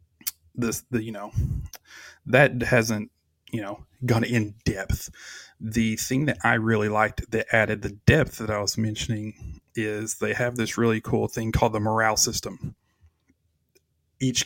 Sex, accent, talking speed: male, American, 155 wpm